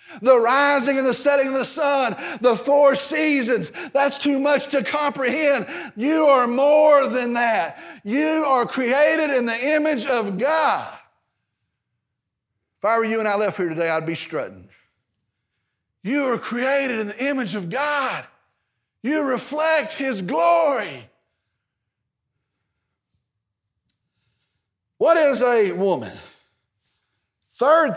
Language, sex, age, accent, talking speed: English, male, 50-69, American, 125 wpm